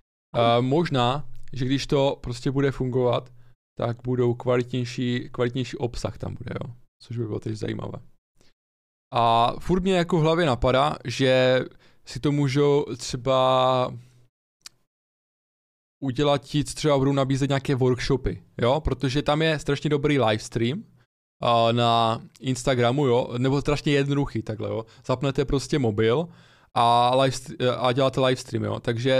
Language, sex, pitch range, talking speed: Czech, male, 120-135 Hz, 135 wpm